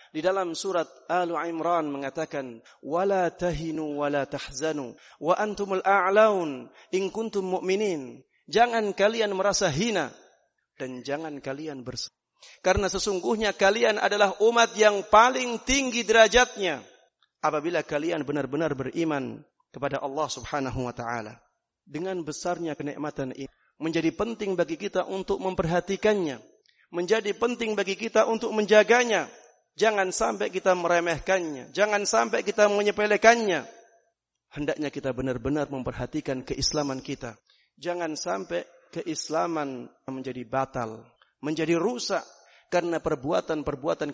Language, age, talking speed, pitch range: Indonesian, 30-49, 110 wpm, 145-200 Hz